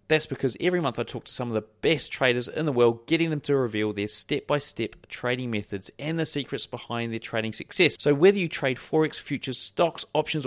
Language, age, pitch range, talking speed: English, 30-49, 120-155 Hz, 220 wpm